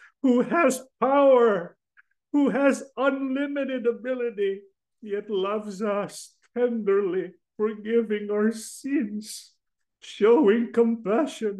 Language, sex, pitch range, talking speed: English, male, 210-275 Hz, 85 wpm